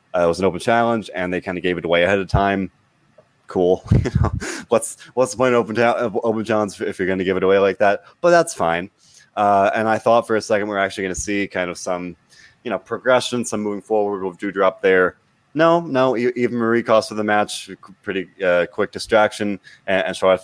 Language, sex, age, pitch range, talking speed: English, male, 20-39, 90-115 Hz, 240 wpm